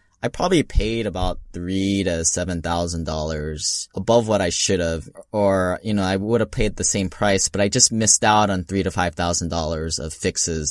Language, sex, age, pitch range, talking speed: English, male, 10-29, 85-110 Hz, 185 wpm